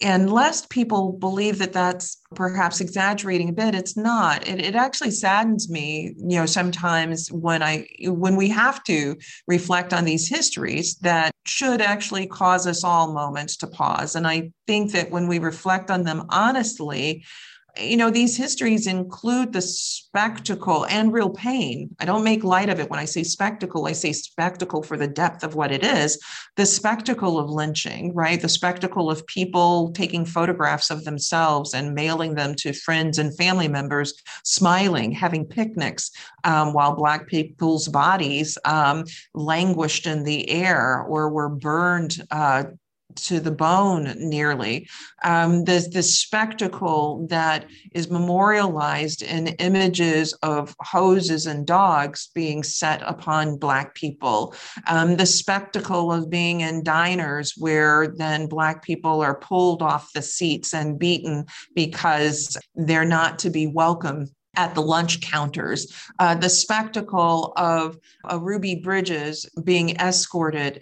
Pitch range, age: 155-185 Hz, 40-59